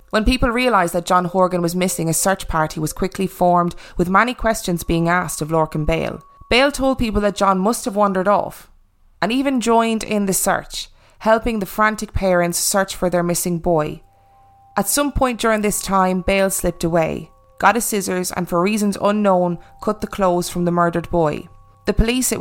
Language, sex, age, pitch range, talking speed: English, female, 20-39, 170-210 Hz, 195 wpm